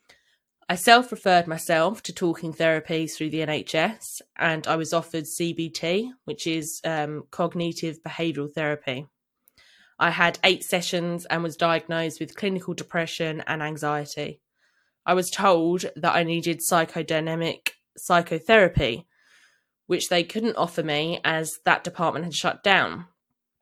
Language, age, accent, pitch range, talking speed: English, 20-39, British, 160-185 Hz, 130 wpm